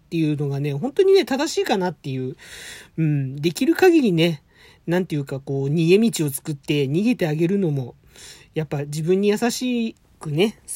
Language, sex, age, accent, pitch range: Japanese, male, 40-59, native, 155-225 Hz